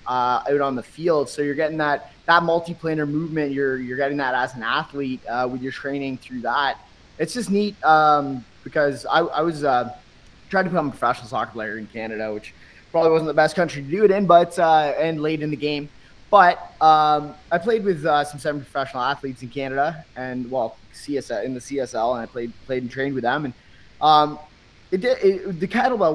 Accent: American